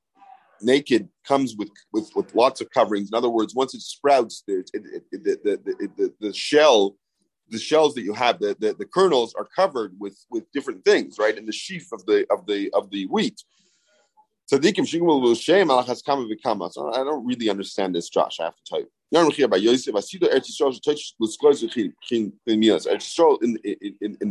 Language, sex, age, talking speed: English, male, 40-59, 145 wpm